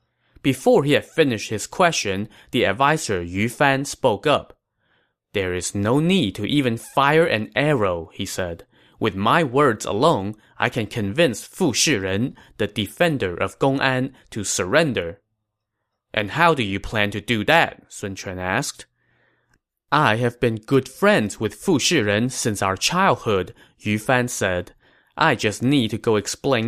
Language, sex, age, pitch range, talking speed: English, male, 20-39, 105-140 Hz, 155 wpm